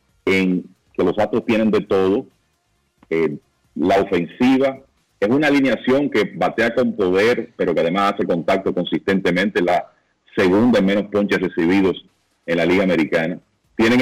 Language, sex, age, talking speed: Spanish, male, 40-59, 145 wpm